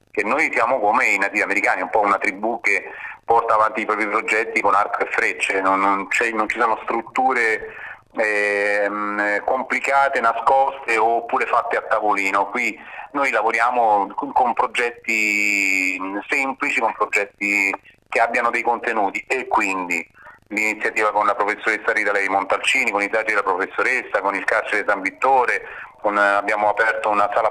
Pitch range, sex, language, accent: 105-125 Hz, male, Italian, native